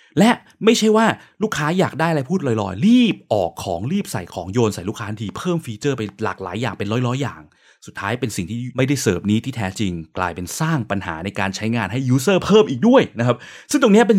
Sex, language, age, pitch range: male, Thai, 20-39, 105-165 Hz